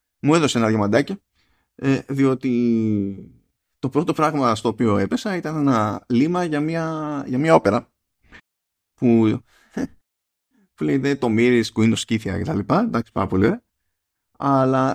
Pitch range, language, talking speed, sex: 105-160 Hz, Greek, 135 wpm, male